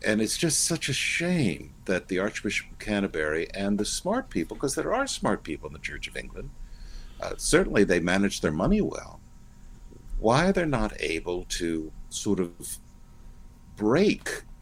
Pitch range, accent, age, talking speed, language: 75-105 Hz, American, 60-79, 170 wpm, English